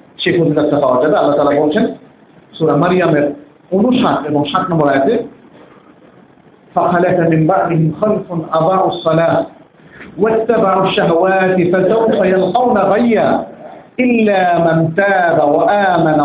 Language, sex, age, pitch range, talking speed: Bengali, male, 50-69, 155-210 Hz, 105 wpm